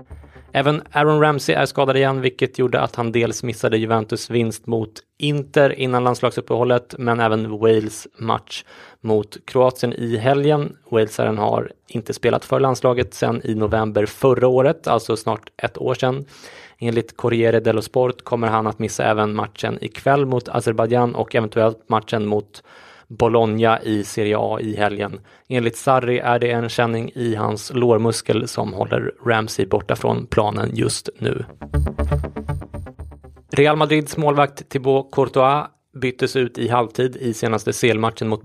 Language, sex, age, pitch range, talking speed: English, male, 20-39, 110-130 Hz, 150 wpm